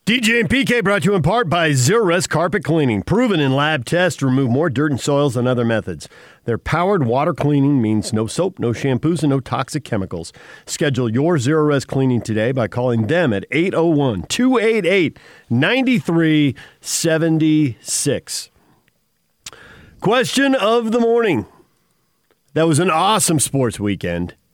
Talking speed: 150 wpm